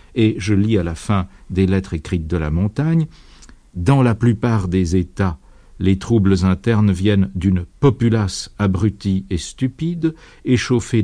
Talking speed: 145 wpm